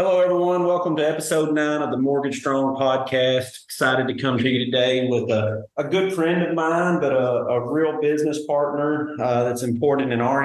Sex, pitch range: male, 130-150 Hz